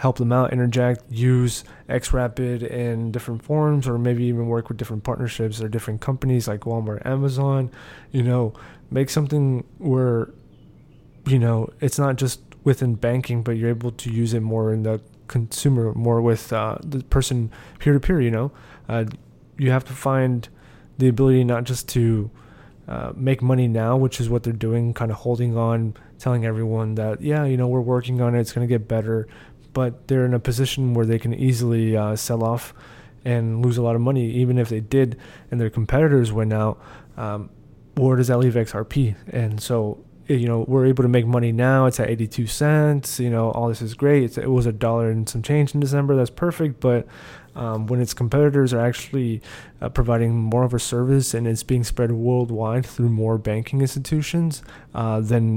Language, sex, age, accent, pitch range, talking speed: English, male, 20-39, American, 115-130 Hz, 190 wpm